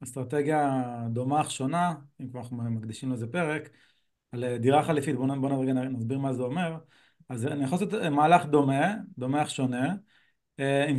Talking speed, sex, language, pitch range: 155 wpm, male, Hebrew, 130-175 Hz